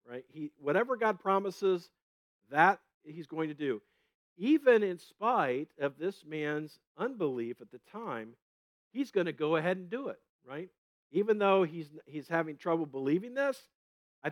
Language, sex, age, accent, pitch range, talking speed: English, male, 50-69, American, 145-220 Hz, 160 wpm